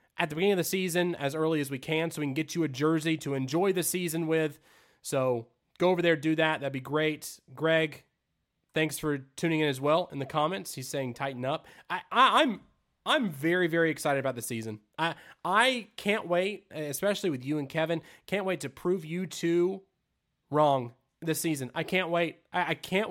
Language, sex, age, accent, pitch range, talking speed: English, male, 20-39, American, 140-180 Hz, 210 wpm